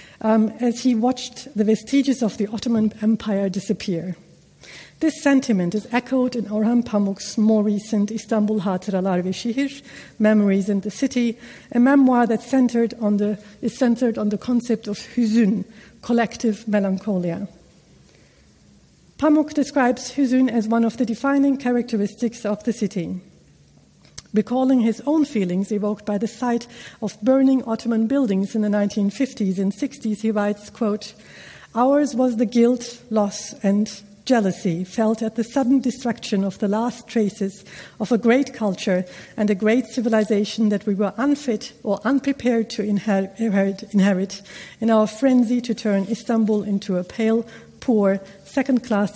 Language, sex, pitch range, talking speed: German, female, 205-245 Hz, 145 wpm